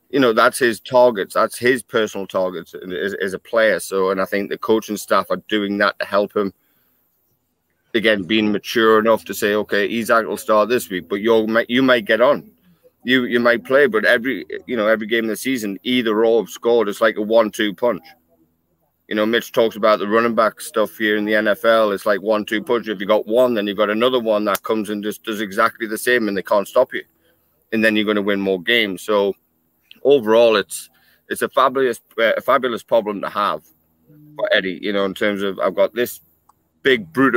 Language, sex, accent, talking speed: English, male, British, 220 wpm